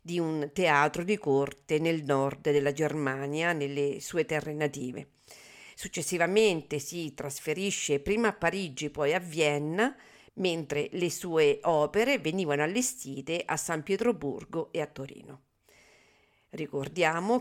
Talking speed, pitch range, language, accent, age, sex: 120 wpm, 140-180 Hz, Italian, native, 50-69, female